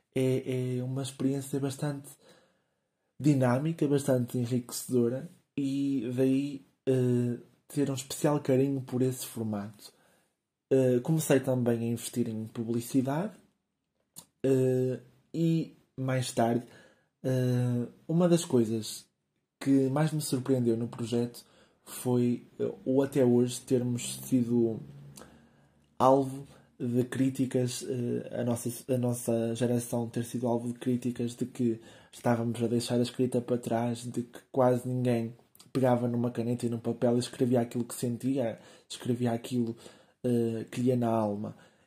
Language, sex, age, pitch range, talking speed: Portuguese, male, 20-39, 120-140 Hz, 120 wpm